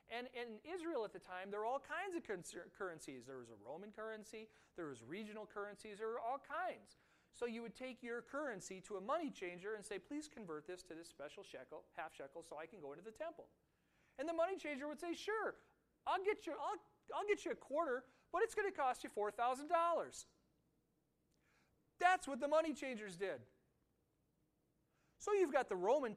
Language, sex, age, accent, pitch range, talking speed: English, male, 40-59, American, 190-300 Hz, 195 wpm